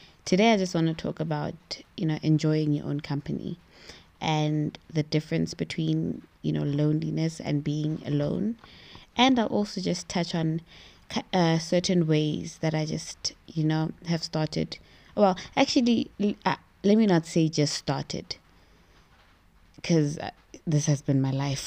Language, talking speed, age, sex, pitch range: English, 145 wpm, 20-39, female, 150-195 Hz